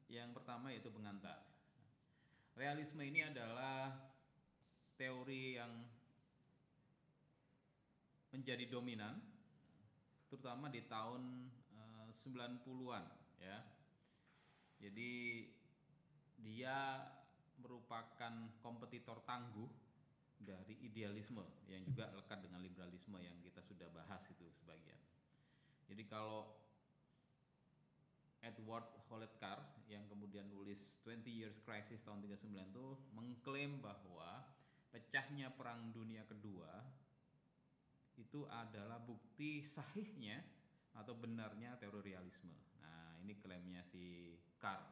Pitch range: 100-130 Hz